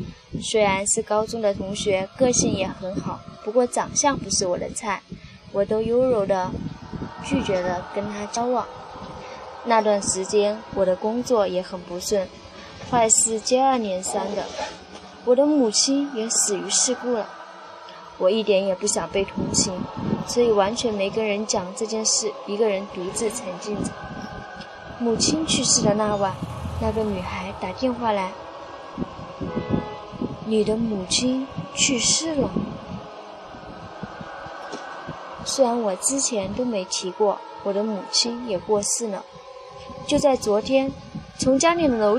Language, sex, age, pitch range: Chinese, female, 10-29, 200-250 Hz